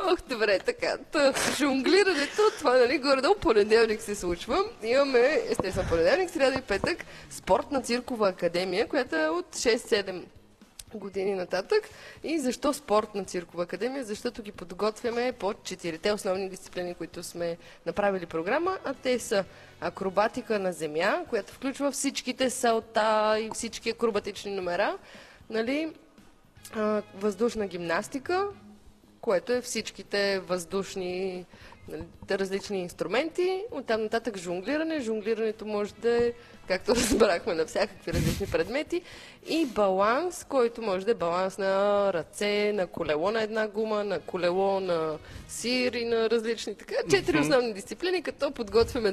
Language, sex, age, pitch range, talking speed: Bulgarian, female, 20-39, 195-260 Hz, 130 wpm